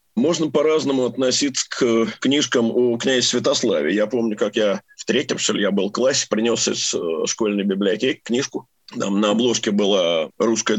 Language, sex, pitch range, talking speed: Russian, male, 115-140 Hz, 160 wpm